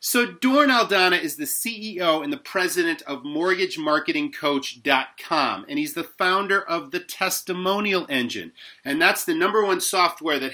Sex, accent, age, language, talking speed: male, American, 30-49, English, 150 wpm